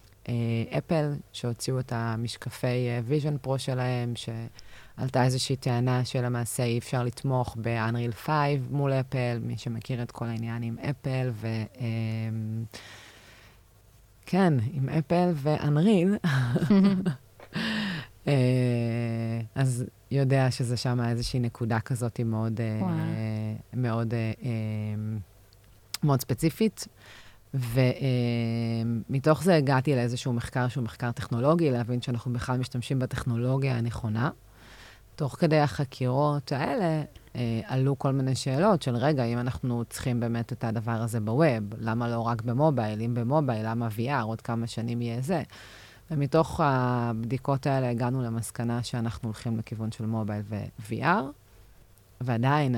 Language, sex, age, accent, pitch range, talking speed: English, female, 30-49, Italian, 115-135 Hz, 105 wpm